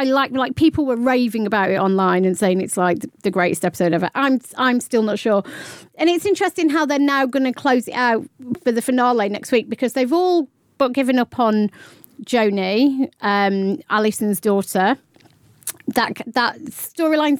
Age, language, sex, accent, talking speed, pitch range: 30-49, English, female, British, 180 wpm, 200-260 Hz